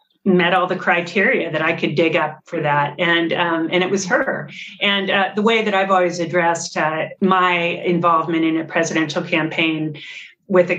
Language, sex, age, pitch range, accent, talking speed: English, female, 40-59, 175-210 Hz, American, 190 wpm